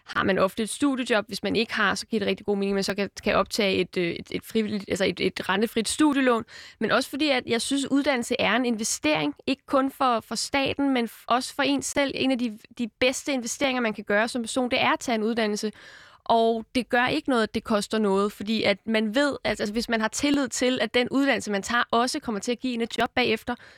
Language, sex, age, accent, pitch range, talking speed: Danish, female, 20-39, native, 220-270 Hz, 250 wpm